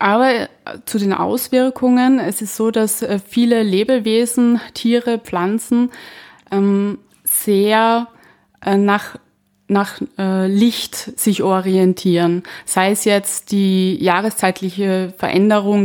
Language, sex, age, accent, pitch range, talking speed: German, female, 20-39, German, 195-230 Hz, 90 wpm